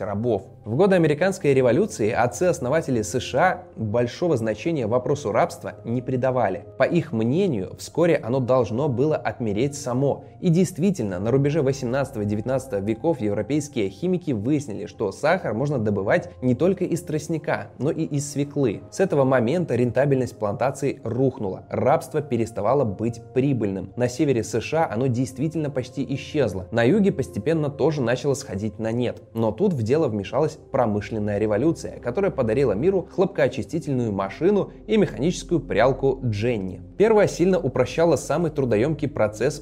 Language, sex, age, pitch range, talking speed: Russian, male, 20-39, 110-150 Hz, 135 wpm